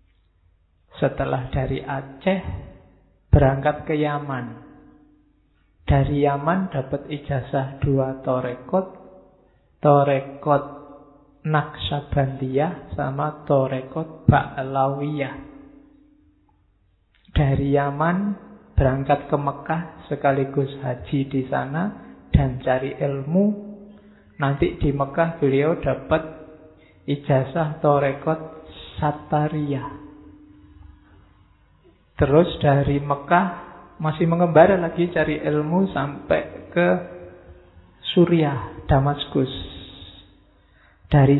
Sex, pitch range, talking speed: male, 135-160 Hz, 70 wpm